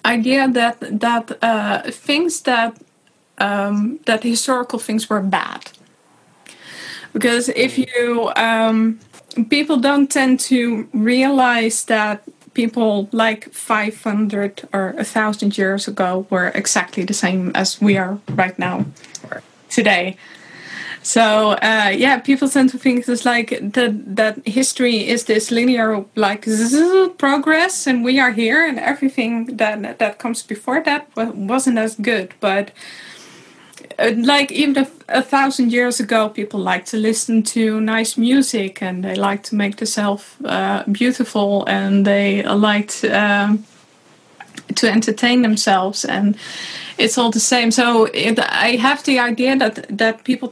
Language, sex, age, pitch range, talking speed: English, female, 20-39, 205-250 Hz, 140 wpm